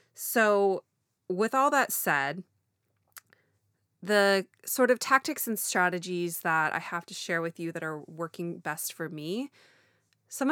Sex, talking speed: female, 145 wpm